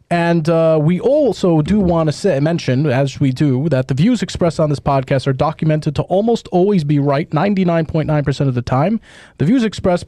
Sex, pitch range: male, 135-180 Hz